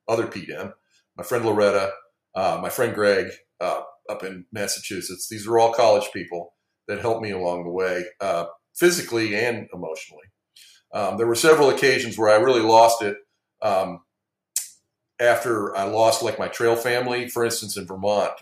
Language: English